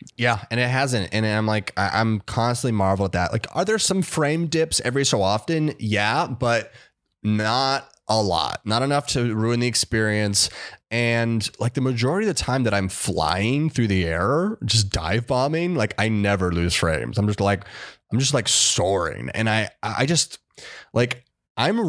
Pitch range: 100-130 Hz